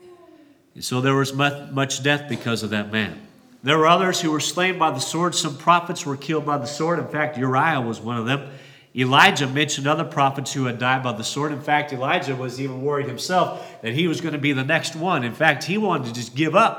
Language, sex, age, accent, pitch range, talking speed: English, male, 40-59, American, 135-170 Hz, 235 wpm